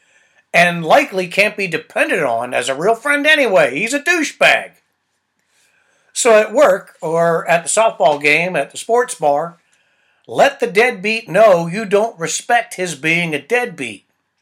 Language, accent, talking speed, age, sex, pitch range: English, American, 155 wpm, 60-79, male, 155-220 Hz